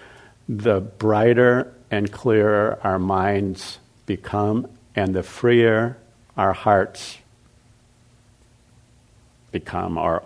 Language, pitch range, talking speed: English, 100-120 Hz, 80 wpm